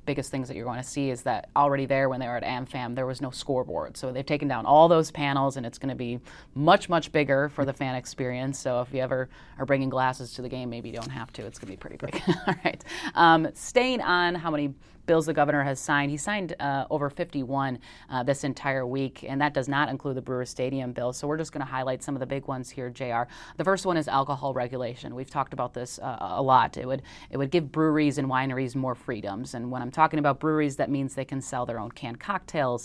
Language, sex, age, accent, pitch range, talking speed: English, female, 30-49, American, 130-150 Hz, 260 wpm